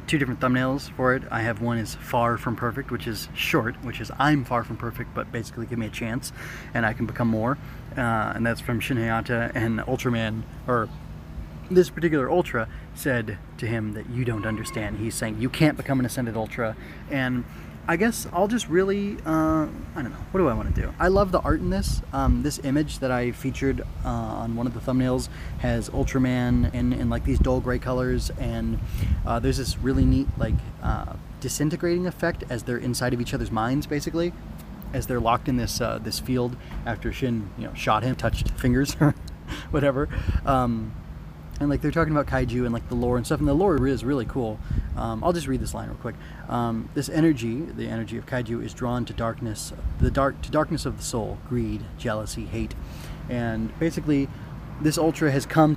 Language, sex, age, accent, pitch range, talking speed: English, male, 20-39, American, 115-140 Hz, 200 wpm